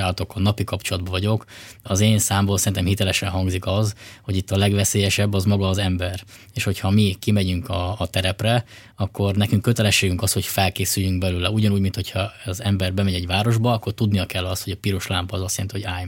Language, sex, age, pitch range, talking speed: Hungarian, male, 20-39, 95-110 Hz, 200 wpm